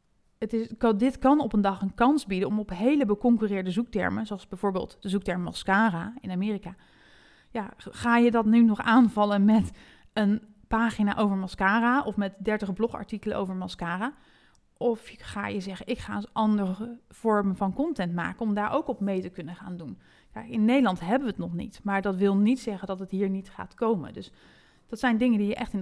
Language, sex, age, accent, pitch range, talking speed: Dutch, female, 30-49, Dutch, 190-235 Hz, 195 wpm